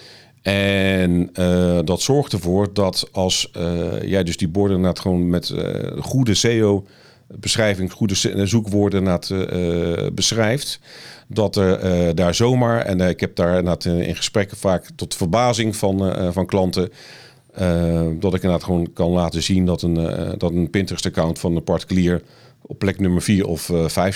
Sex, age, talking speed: male, 40-59, 155 wpm